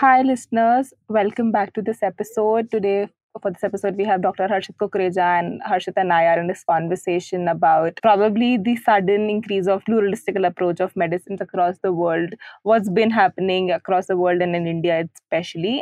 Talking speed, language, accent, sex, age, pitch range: 180 wpm, English, Indian, female, 20-39, 195-240 Hz